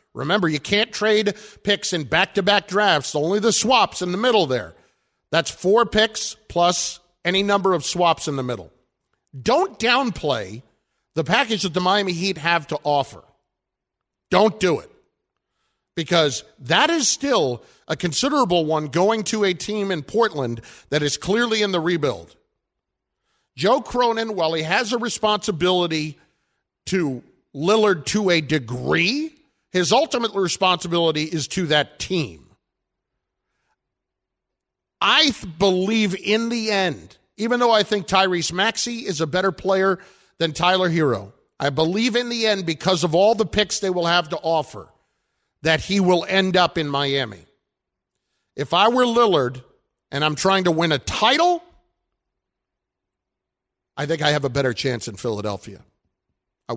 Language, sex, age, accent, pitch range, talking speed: English, male, 50-69, American, 150-210 Hz, 145 wpm